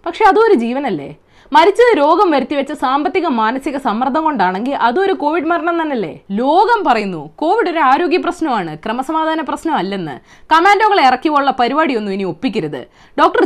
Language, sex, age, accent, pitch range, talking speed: Malayalam, female, 20-39, native, 195-320 Hz, 130 wpm